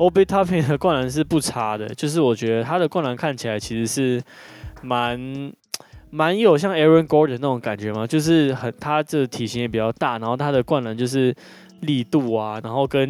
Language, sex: Chinese, male